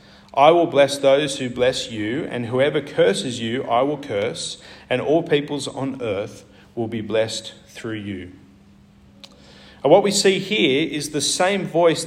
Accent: Australian